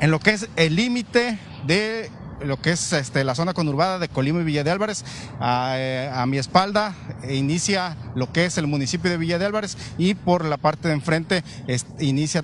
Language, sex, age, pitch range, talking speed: Spanish, male, 40-59, 145-195 Hz, 195 wpm